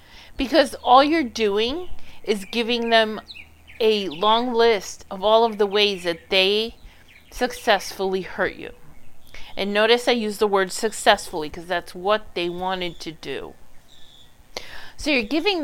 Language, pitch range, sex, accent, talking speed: English, 175-230 Hz, female, American, 140 wpm